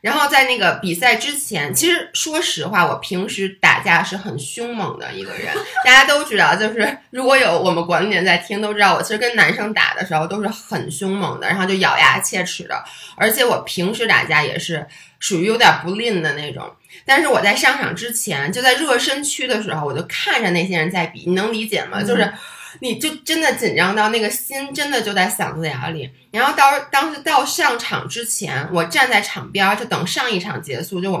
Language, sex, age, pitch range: Chinese, female, 20-39, 180-255 Hz